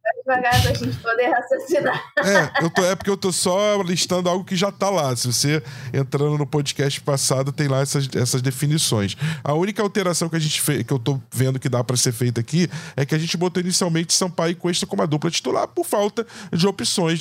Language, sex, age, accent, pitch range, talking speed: Portuguese, male, 20-39, Brazilian, 135-175 Hz, 225 wpm